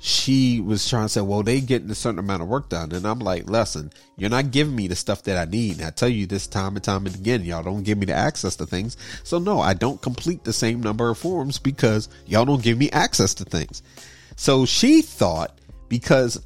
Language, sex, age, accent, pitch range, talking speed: English, male, 30-49, American, 90-115 Hz, 240 wpm